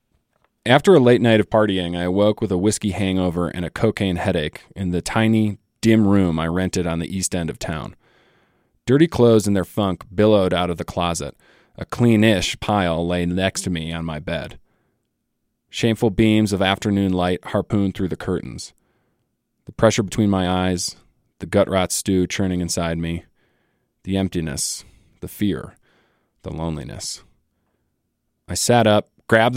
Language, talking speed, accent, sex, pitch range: English, 160 wpm, American, male, 90-110 Hz